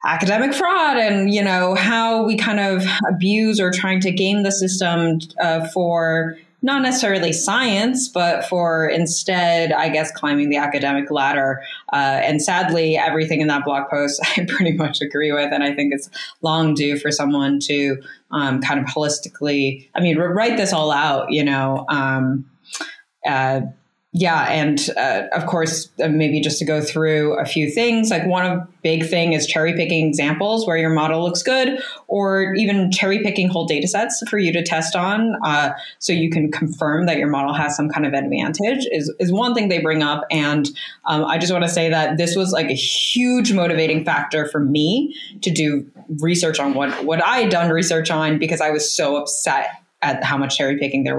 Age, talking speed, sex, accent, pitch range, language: 20-39, 190 wpm, female, American, 150-185 Hz, English